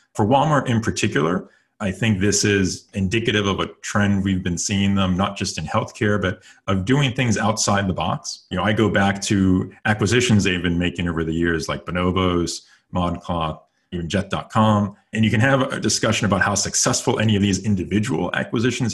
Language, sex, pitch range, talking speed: English, male, 90-110 Hz, 185 wpm